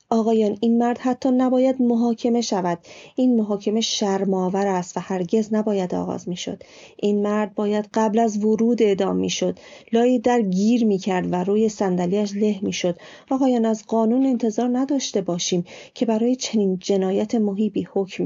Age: 30-49